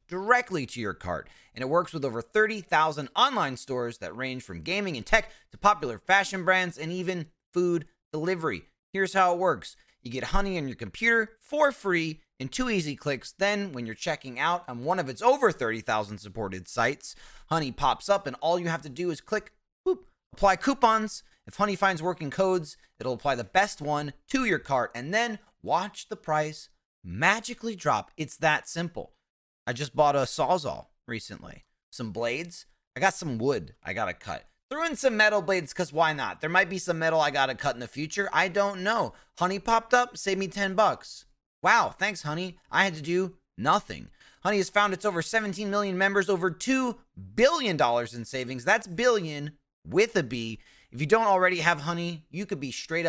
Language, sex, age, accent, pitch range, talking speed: English, male, 30-49, American, 140-200 Hz, 195 wpm